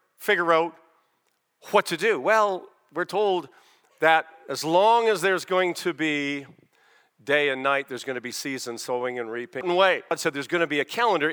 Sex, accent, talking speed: male, American, 185 wpm